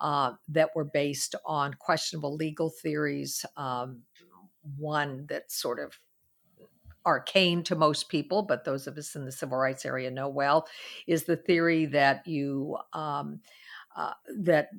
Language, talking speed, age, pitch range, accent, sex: English, 145 wpm, 50-69, 135-165 Hz, American, female